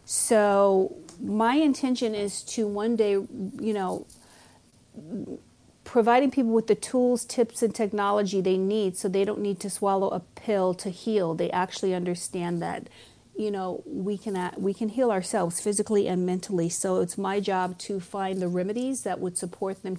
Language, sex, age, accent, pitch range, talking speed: English, female, 40-59, American, 185-210 Hz, 170 wpm